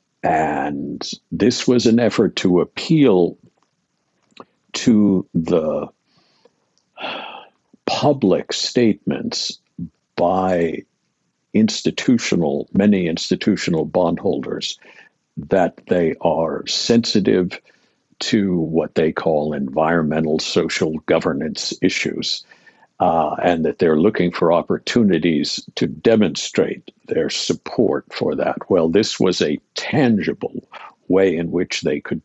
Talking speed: 95 wpm